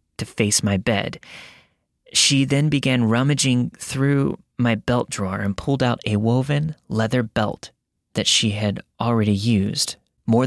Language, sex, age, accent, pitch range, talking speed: English, male, 20-39, American, 100-120 Hz, 145 wpm